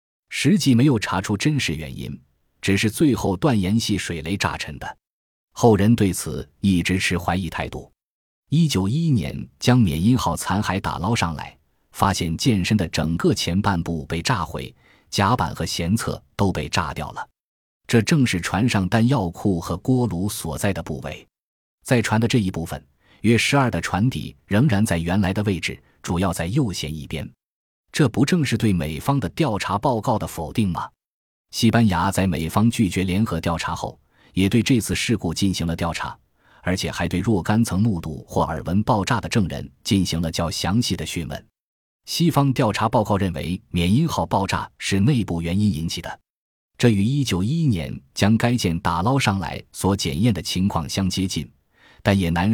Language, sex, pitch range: Chinese, male, 85-115 Hz